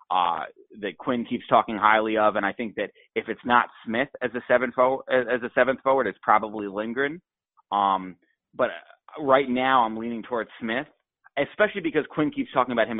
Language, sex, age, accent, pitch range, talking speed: English, male, 30-49, American, 110-140 Hz, 190 wpm